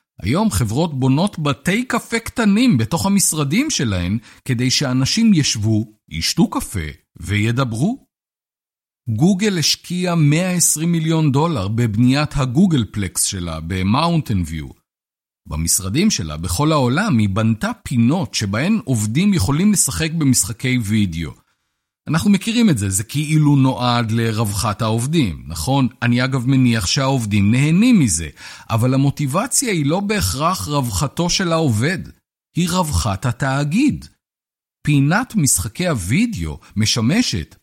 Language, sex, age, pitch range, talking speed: Hebrew, male, 50-69, 110-165 Hz, 110 wpm